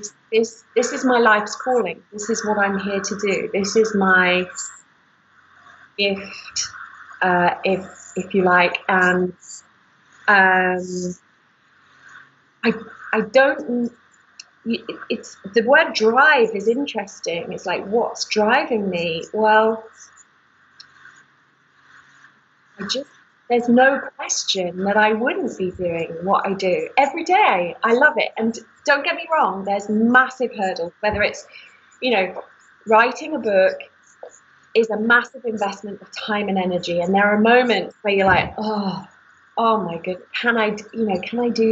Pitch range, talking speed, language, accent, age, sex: 190-240 Hz, 140 wpm, English, British, 30-49, female